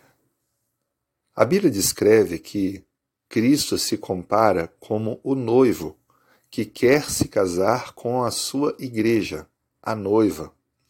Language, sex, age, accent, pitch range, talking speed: Portuguese, male, 40-59, Brazilian, 105-135 Hz, 110 wpm